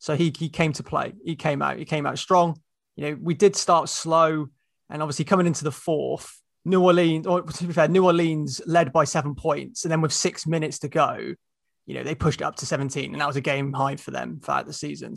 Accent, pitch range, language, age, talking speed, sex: British, 140-170 Hz, English, 20-39, 250 wpm, male